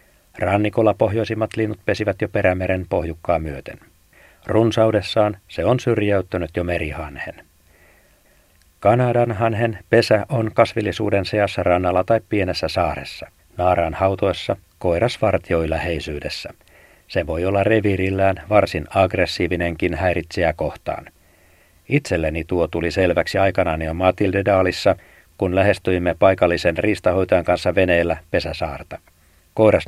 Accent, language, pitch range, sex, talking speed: native, Finnish, 85-105 Hz, male, 100 wpm